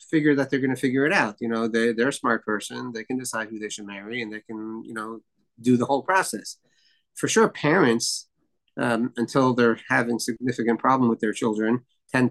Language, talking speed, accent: English, 215 wpm, American